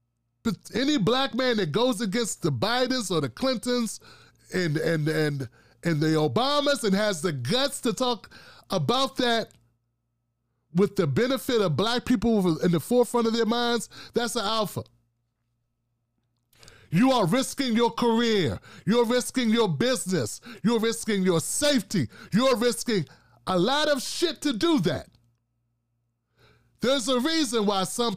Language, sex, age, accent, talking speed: English, male, 30-49, American, 140 wpm